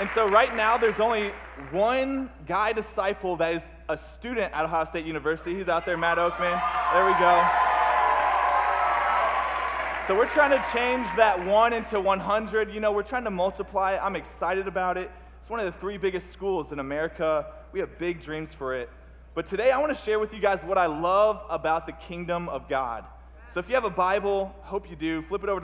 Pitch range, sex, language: 150-200 Hz, male, English